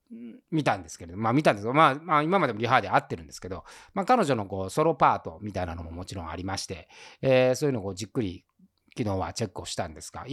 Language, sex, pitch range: Japanese, male, 95-150 Hz